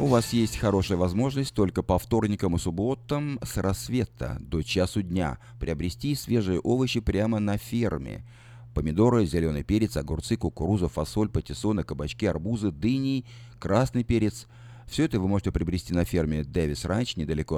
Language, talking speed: Russian, 145 wpm